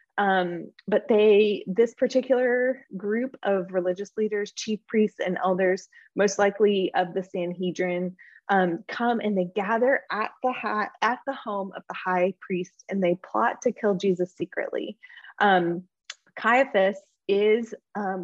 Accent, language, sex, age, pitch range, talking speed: American, English, female, 20-39, 180-215 Hz, 145 wpm